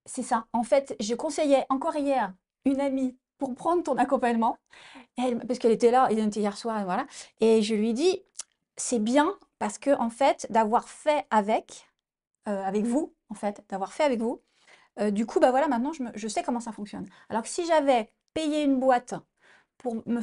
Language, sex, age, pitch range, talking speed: French, female, 30-49, 220-280 Hz, 210 wpm